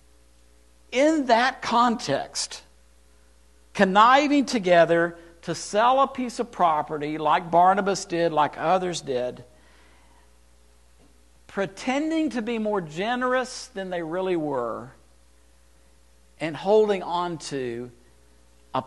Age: 60-79